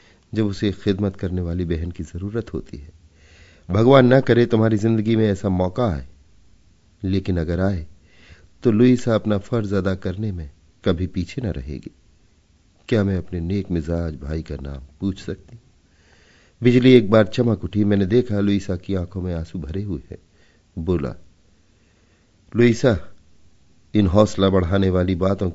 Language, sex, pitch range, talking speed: Hindi, male, 85-110 Hz, 150 wpm